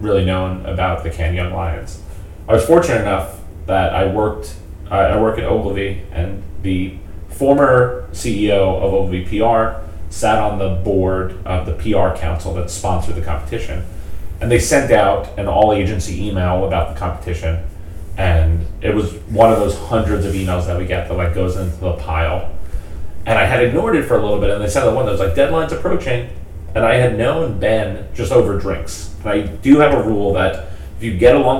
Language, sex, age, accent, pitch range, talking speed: English, male, 30-49, American, 85-105 Hz, 195 wpm